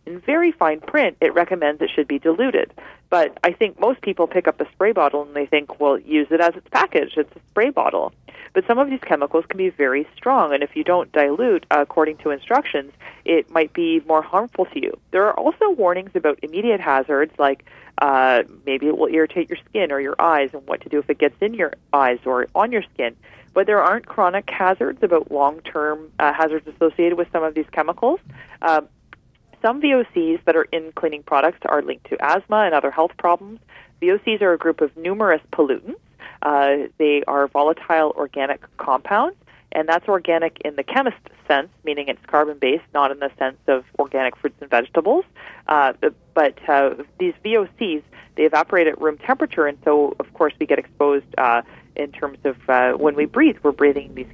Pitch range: 145-185 Hz